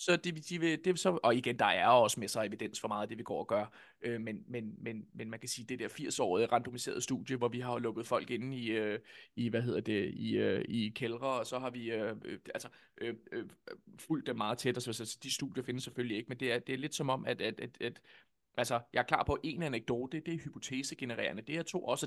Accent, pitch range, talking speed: native, 125-175 Hz, 270 wpm